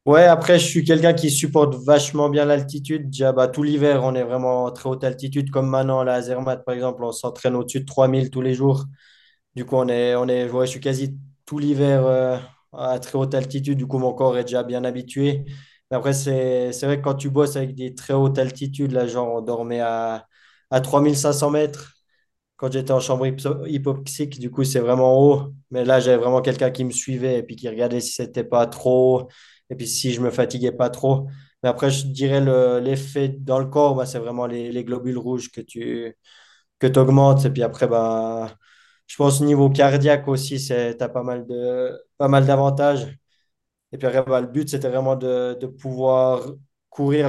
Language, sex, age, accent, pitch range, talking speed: French, male, 20-39, French, 125-140 Hz, 210 wpm